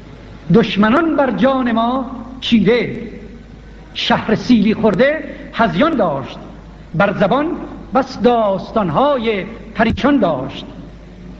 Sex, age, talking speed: male, 60-79, 85 wpm